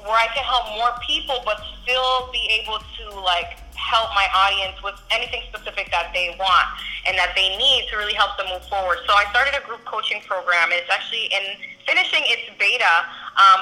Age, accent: 20-39, American